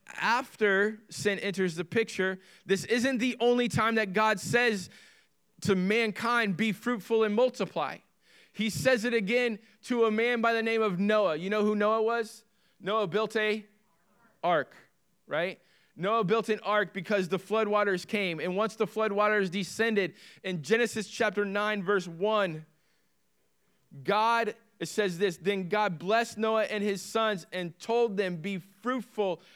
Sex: male